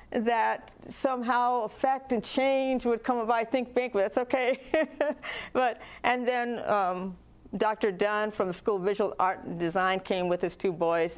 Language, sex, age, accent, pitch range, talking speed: English, female, 50-69, American, 170-225 Hz, 175 wpm